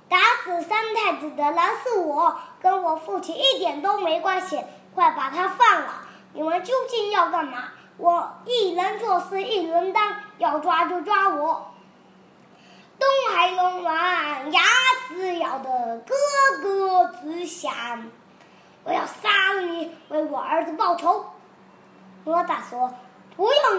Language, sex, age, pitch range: Chinese, male, 20-39, 305-395 Hz